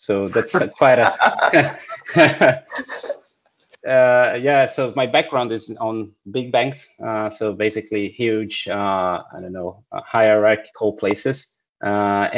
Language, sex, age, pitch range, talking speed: English, male, 30-49, 105-125 Hz, 120 wpm